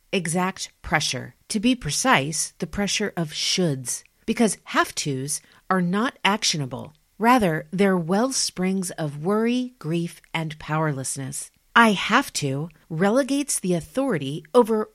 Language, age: English, 40-59